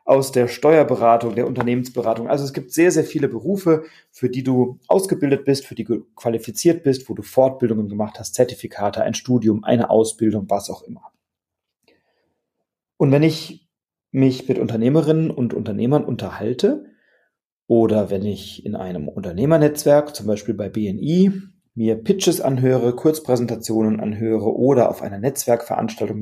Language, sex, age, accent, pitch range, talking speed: German, male, 40-59, German, 110-150 Hz, 145 wpm